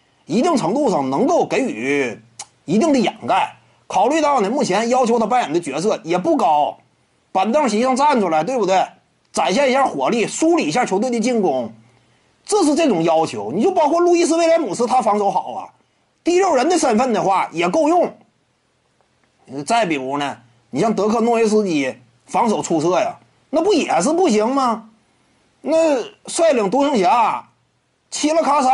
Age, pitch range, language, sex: 30-49, 215-300 Hz, Chinese, male